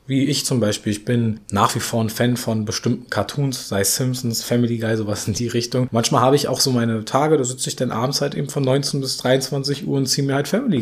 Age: 20-39